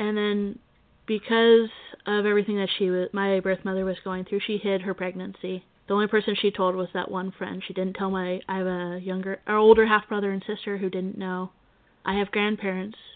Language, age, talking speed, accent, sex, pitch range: English, 20-39, 210 wpm, American, female, 190-210 Hz